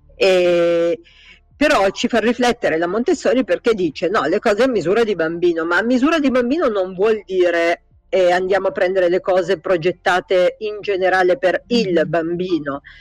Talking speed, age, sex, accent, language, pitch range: 165 wpm, 50-69, female, native, Italian, 170-225 Hz